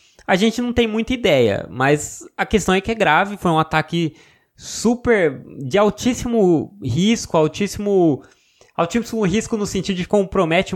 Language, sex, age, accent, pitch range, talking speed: Portuguese, male, 20-39, Brazilian, 140-200 Hz, 150 wpm